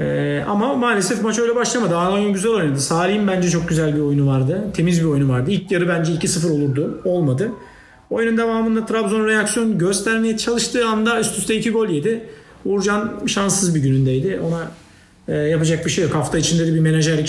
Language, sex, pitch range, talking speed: Turkish, male, 150-195 Hz, 185 wpm